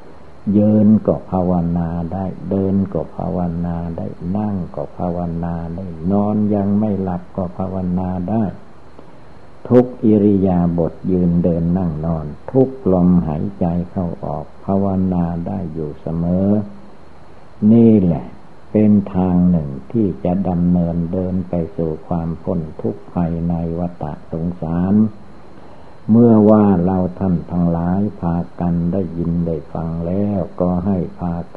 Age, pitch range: 60-79, 85-95 Hz